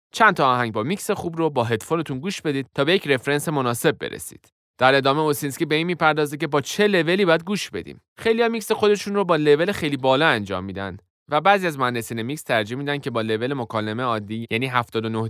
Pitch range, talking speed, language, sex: 115-160 Hz, 210 wpm, Persian, male